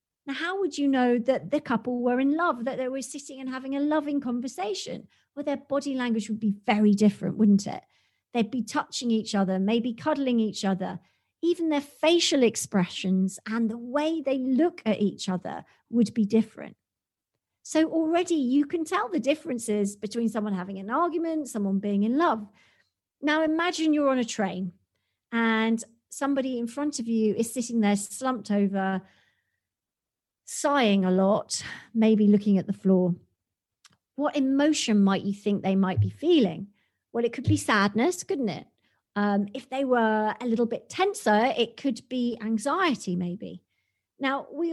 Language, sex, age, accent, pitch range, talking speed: English, female, 50-69, British, 205-285 Hz, 170 wpm